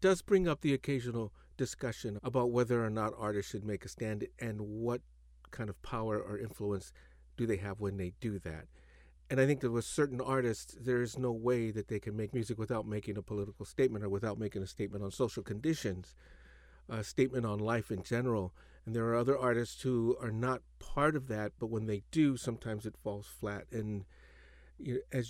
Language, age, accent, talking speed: English, 50-69, American, 200 wpm